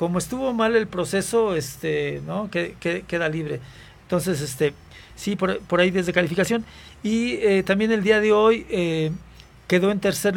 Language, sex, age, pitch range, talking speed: Spanish, male, 50-69, 155-200 Hz, 155 wpm